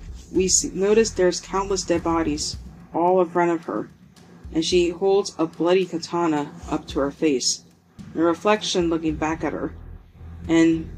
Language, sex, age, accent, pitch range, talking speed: English, female, 30-49, American, 150-180 Hz, 160 wpm